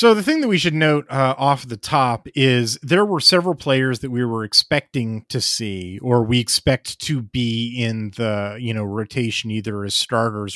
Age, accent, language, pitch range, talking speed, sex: 30-49, American, English, 100-125 Hz, 200 wpm, male